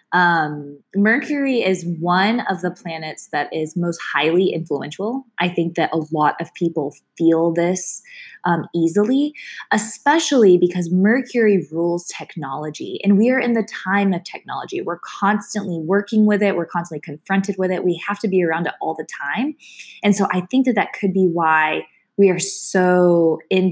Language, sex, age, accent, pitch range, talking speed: English, female, 20-39, American, 160-210 Hz, 170 wpm